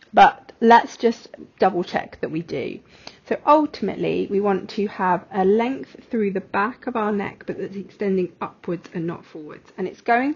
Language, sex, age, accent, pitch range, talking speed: English, female, 30-49, British, 190-235 Hz, 185 wpm